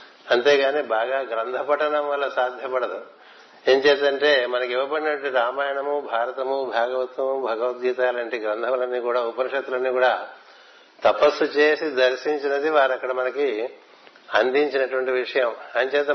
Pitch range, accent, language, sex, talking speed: 130-150 Hz, native, Telugu, male, 105 wpm